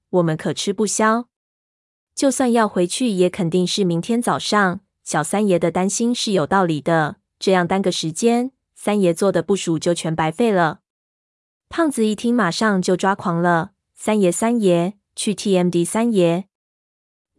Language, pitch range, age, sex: Chinese, 170-210 Hz, 20-39, female